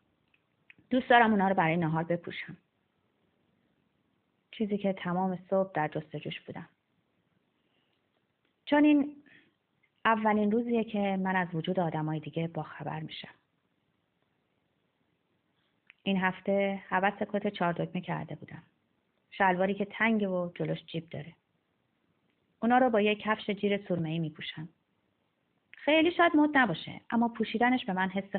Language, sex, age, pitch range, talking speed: Persian, female, 30-49, 170-215 Hz, 125 wpm